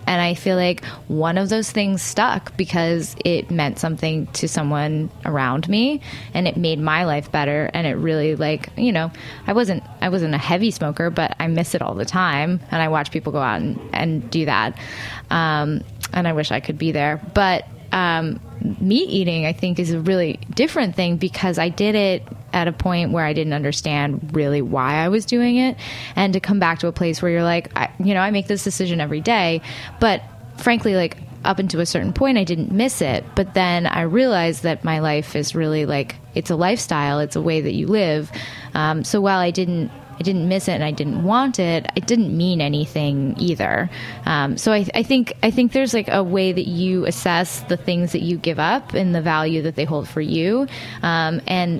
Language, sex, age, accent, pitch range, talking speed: English, female, 20-39, American, 155-190 Hz, 215 wpm